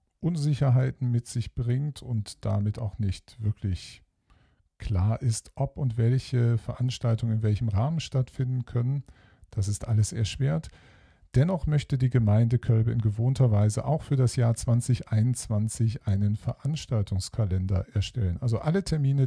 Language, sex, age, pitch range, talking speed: German, male, 50-69, 110-130 Hz, 135 wpm